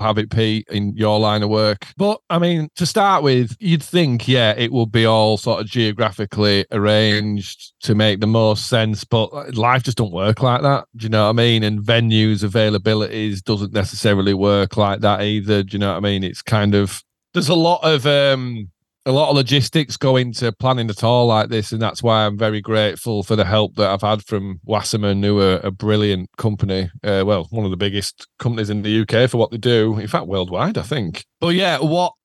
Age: 30-49